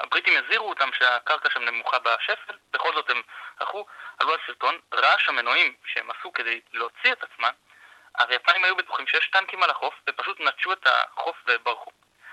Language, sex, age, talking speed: Hebrew, male, 20-39, 165 wpm